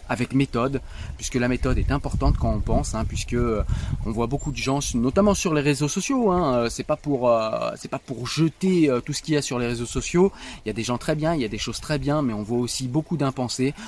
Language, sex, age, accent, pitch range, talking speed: French, male, 30-49, French, 120-150 Hz, 260 wpm